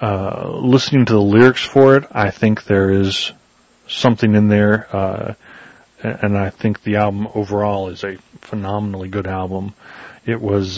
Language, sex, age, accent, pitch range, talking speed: English, male, 30-49, American, 100-110 Hz, 155 wpm